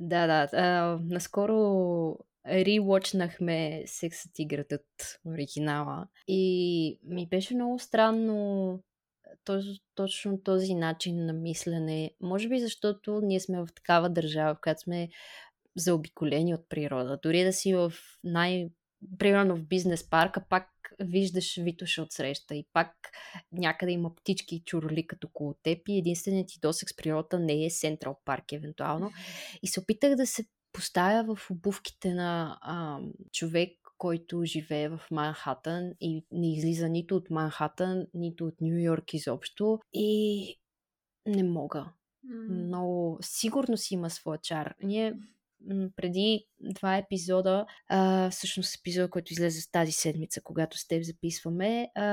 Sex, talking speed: female, 130 wpm